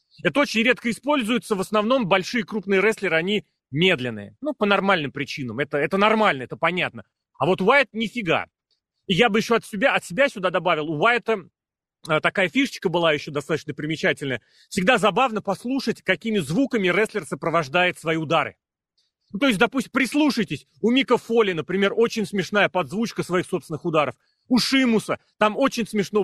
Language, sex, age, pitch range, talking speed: Russian, male, 30-49, 170-230 Hz, 160 wpm